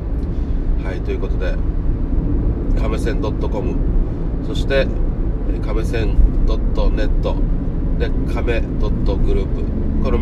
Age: 30-49